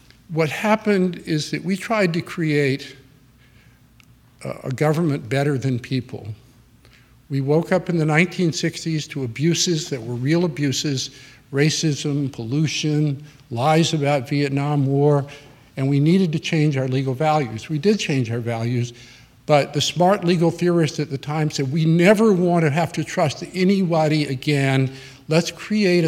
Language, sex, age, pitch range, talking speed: English, male, 50-69, 130-170 Hz, 145 wpm